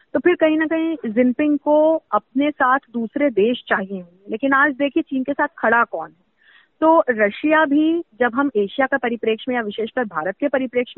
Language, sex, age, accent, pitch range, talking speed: Hindi, female, 30-49, native, 220-285 Hz, 190 wpm